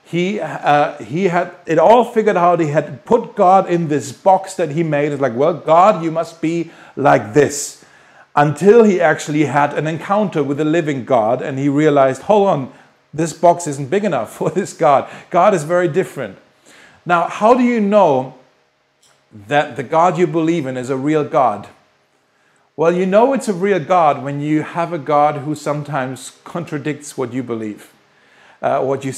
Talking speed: 185 wpm